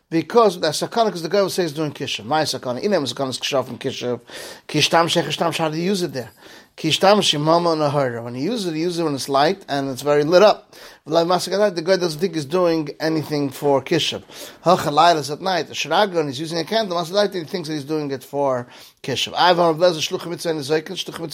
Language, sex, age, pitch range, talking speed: English, male, 30-49, 145-190 Hz, 190 wpm